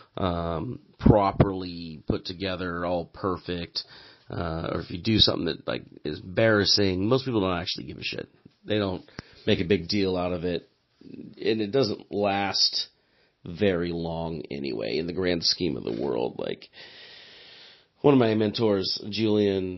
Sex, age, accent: male, 40-59, American